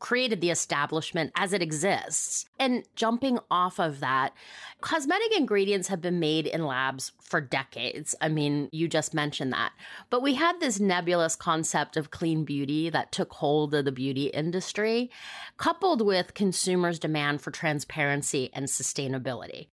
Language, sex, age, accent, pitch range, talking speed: English, female, 30-49, American, 145-195 Hz, 150 wpm